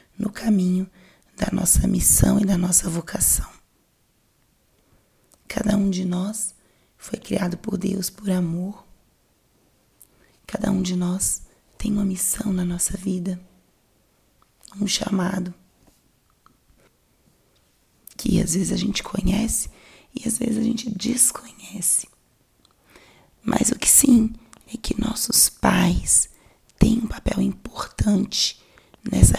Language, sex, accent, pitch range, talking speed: Portuguese, female, Brazilian, 185-215 Hz, 115 wpm